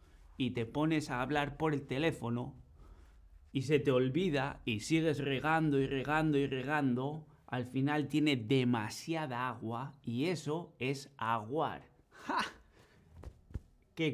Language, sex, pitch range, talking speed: Spanish, male, 110-150 Hz, 125 wpm